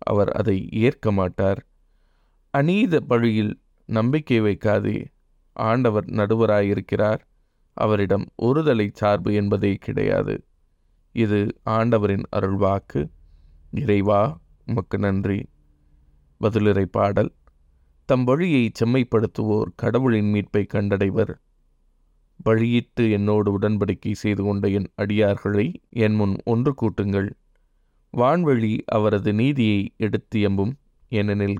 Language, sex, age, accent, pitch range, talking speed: Tamil, male, 20-39, native, 100-115 Hz, 85 wpm